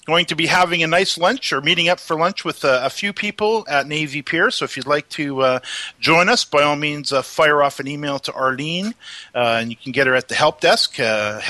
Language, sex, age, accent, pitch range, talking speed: English, male, 40-59, American, 130-185 Hz, 255 wpm